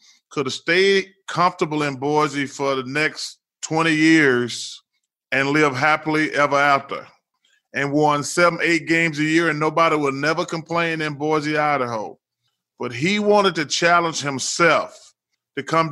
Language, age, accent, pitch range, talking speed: English, 30-49, American, 150-240 Hz, 145 wpm